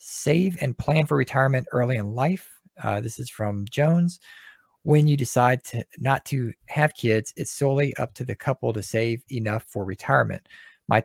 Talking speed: 180 wpm